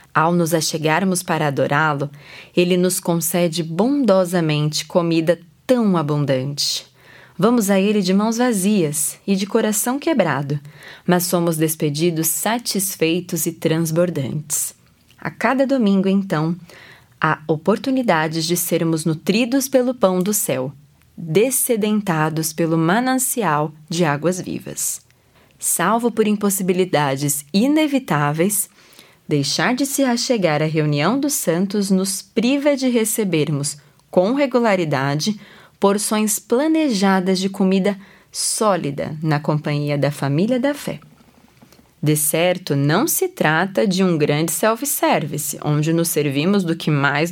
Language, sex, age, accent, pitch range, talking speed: Portuguese, female, 20-39, Brazilian, 150-205 Hz, 115 wpm